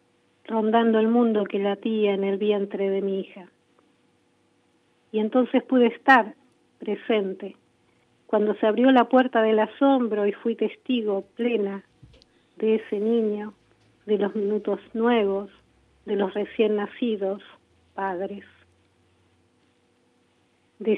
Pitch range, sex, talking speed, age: 205-240 Hz, female, 115 wpm, 50-69